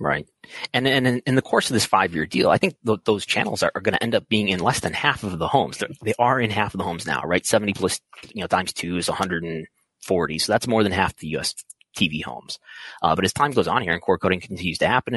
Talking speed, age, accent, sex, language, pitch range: 290 wpm, 30-49, American, male, English, 85-115 Hz